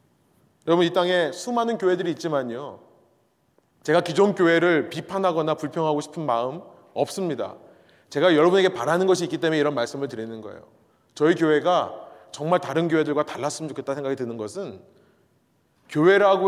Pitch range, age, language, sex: 145-195 Hz, 30-49, Korean, male